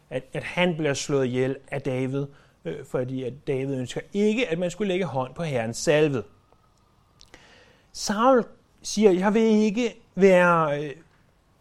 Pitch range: 145-190 Hz